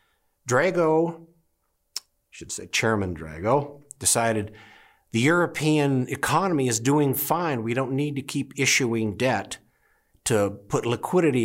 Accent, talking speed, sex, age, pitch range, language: American, 120 wpm, male, 60-79, 100-145 Hz, English